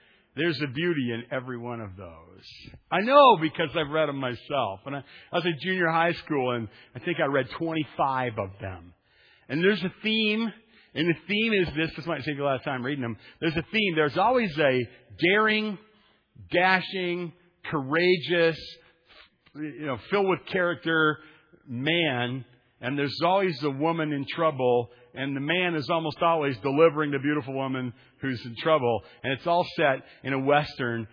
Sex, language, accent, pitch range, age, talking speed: male, English, American, 130-180 Hz, 50-69, 175 wpm